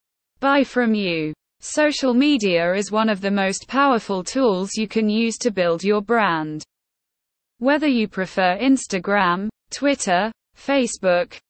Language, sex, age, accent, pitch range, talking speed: English, female, 20-39, British, 185-250 Hz, 130 wpm